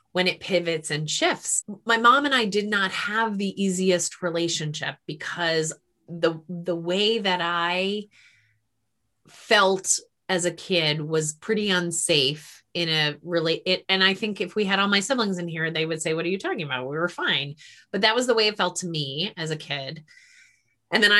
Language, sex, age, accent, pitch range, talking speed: English, female, 30-49, American, 160-200 Hz, 195 wpm